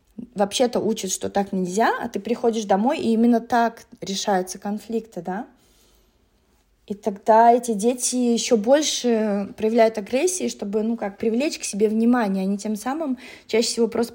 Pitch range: 205-240 Hz